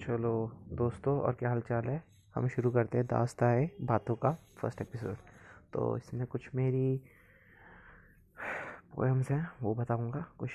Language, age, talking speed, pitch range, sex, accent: Hindi, 20-39, 135 wpm, 115-135 Hz, male, native